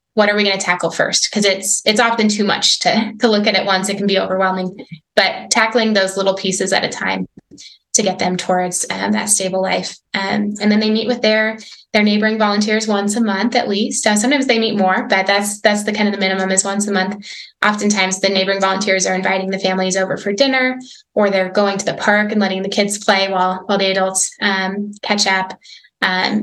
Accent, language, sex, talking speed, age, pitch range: American, English, female, 230 wpm, 10-29, 185-210 Hz